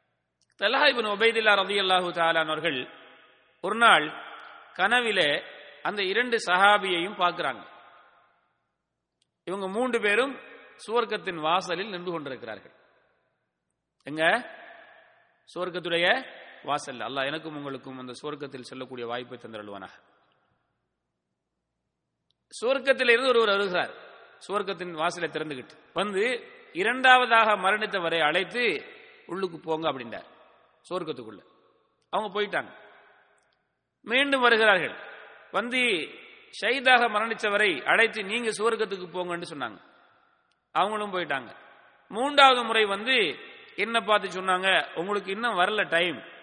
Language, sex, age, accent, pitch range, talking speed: English, male, 30-49, Indian, 170-230 Hz, 85 wpm